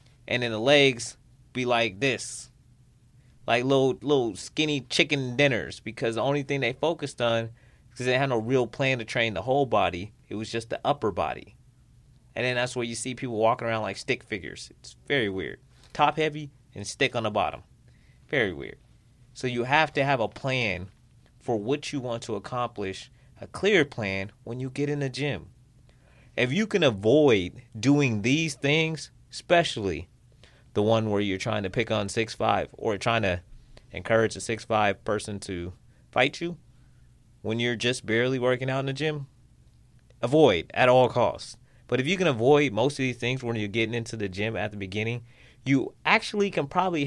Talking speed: 185 wpm